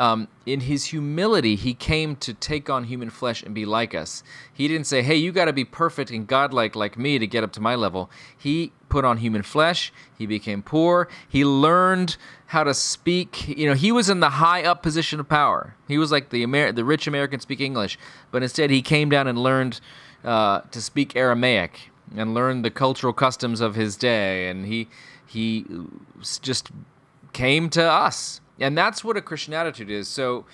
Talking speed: 200 wpm